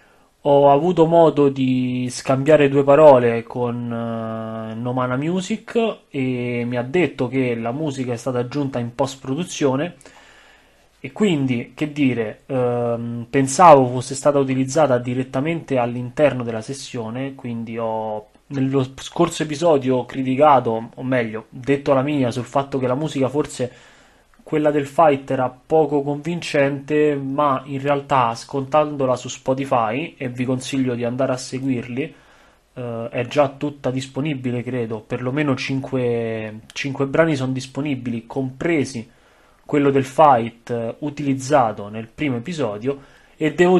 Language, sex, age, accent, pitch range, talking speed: Italian, male, 30-49, native, 120-145 Hz, 130 wpm